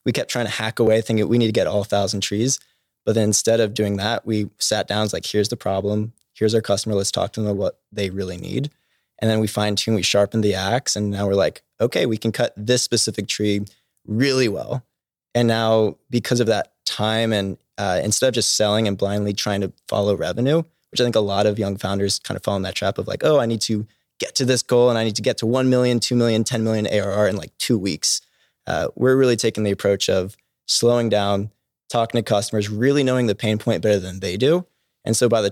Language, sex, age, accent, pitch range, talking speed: English, male, 20-39, American, 105-120 Hz, 245 wpm